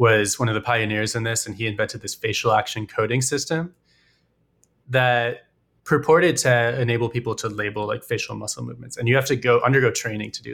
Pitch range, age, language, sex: 115-130 Hz, 20-39, English, male